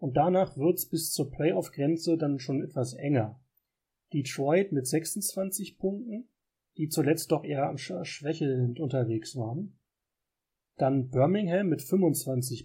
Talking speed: 120 wpm